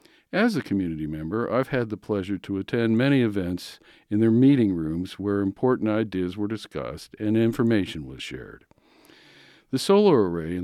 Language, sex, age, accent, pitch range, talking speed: English, male, 50-69, American, 90-125 Hz, 165 wpm